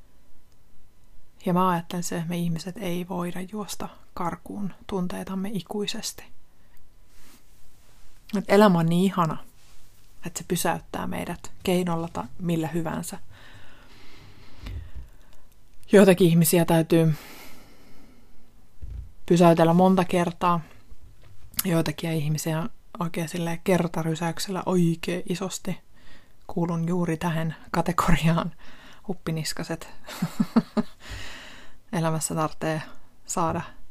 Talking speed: 85 wpm